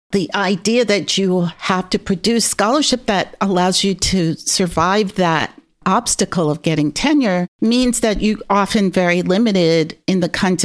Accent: American